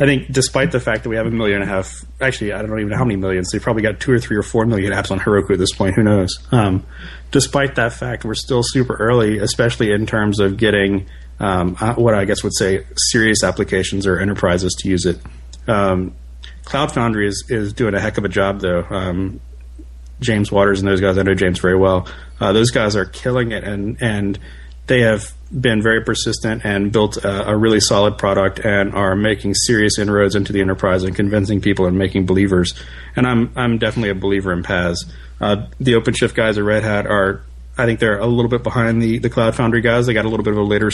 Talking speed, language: 230 wpm, English